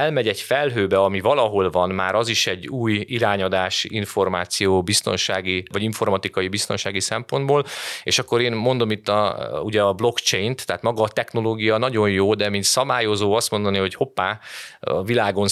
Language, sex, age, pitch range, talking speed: Hungarian, male, 30-49, 95-115 Hz, 160 wpm